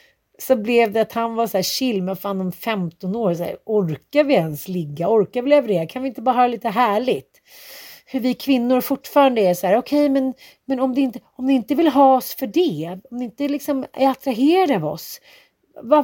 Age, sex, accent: 40-59, female, native